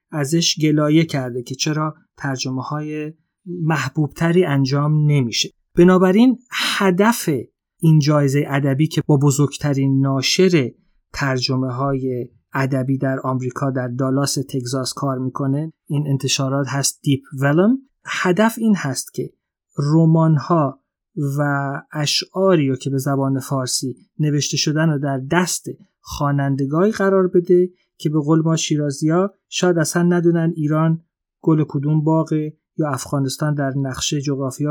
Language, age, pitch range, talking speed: Persian, 30-49, 135-165 Hz, 125 wpm